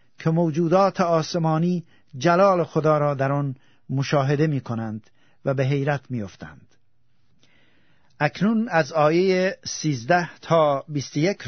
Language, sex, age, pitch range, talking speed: Persian, male, 50-69, 135-155 Hz, 115 wpm